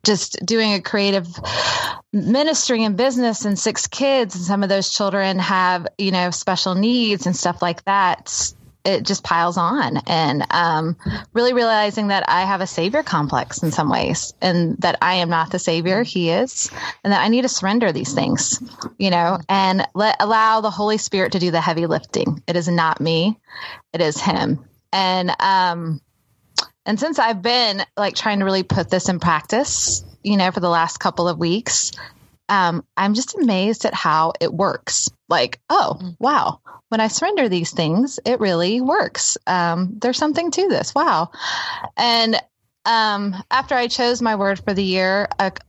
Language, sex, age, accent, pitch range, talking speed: English, female, 20-39, American, 175-220 Hz, 180 wpm